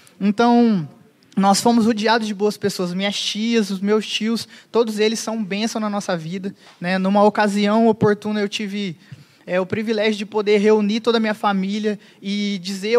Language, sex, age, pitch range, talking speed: Portuguese, male, 20-39, 195-225 Hz, 170 wpm